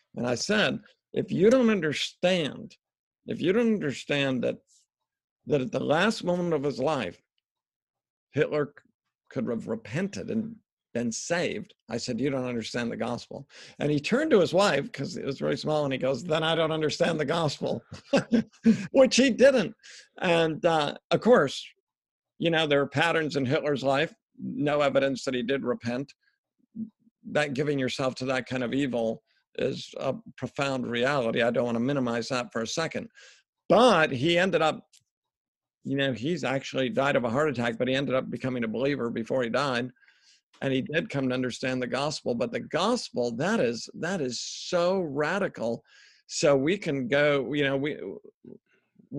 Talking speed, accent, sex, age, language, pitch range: 175 wpm, American, male, 50-69, English, 130-170 Hz